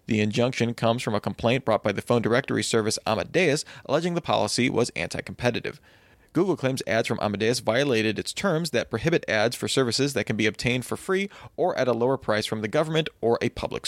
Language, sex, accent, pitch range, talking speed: English, male, American, 110-135 Hz, 210 wpm